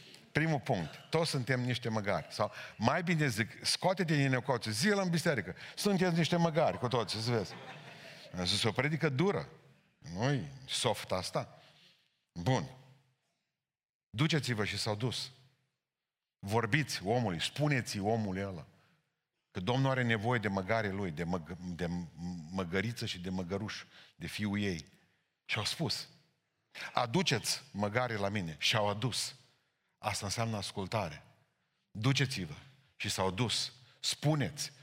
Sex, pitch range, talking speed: male, 100-145 Hz, 130 wpm